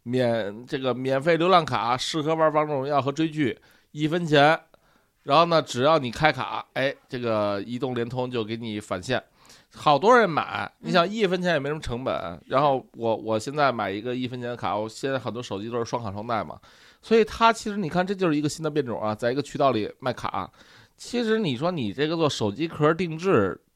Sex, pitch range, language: male, 120-165 Hz, Chinese